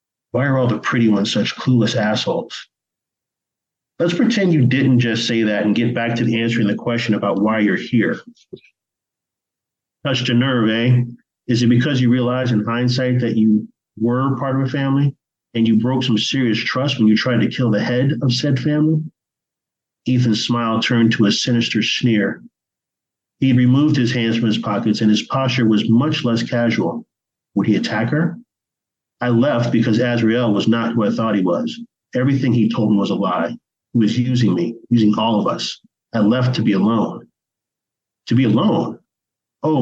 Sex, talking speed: male, 180 wpm